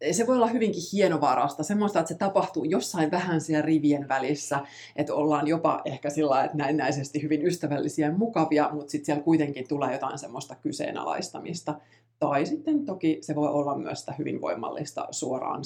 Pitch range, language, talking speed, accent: 145-165 Hz, Finnish, 170 wpm, native